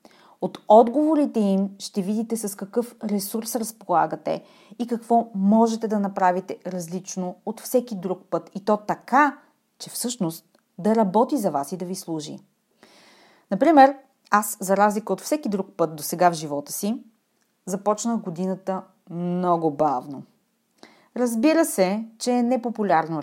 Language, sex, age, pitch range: Bulgarian, female, 30-49, 175-230 Hz